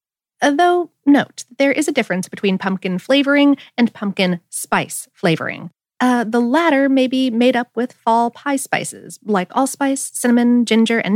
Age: 30-49